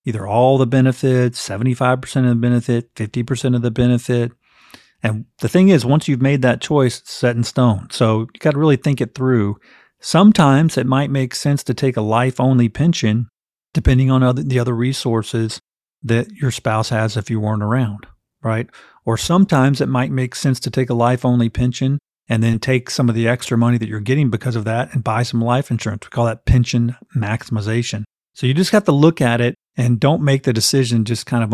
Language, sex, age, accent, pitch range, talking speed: English, male, 40-59, American, 115-130 Hz, 205 wpm